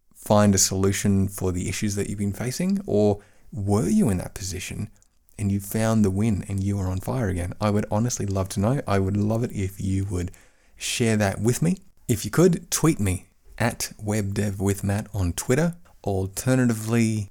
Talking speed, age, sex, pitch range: 185 wpm, 30-49, male, 100-125 Hz